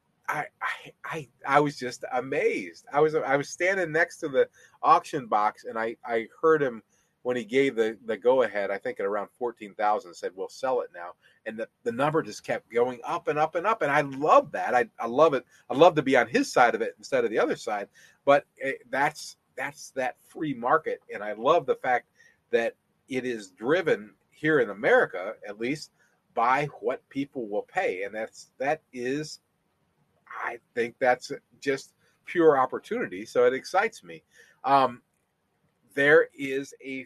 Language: English